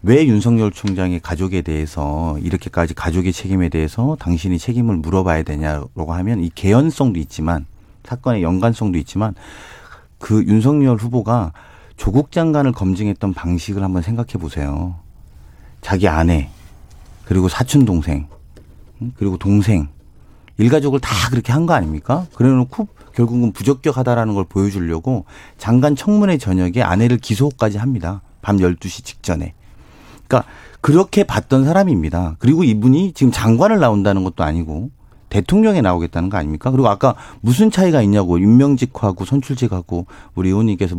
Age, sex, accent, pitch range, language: 40-59, male, native, 90-140 Hz, Korean